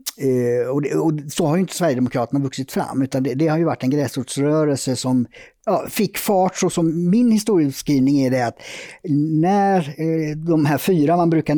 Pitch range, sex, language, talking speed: 125-155 Hz, male, Swedish, 190 wpm